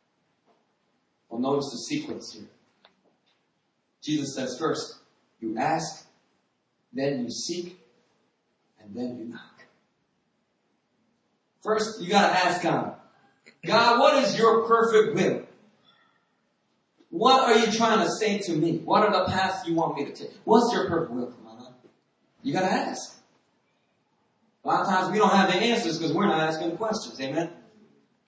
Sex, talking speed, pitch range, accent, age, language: male, 145 wpm, 135-210 Hz, American, 30-49, English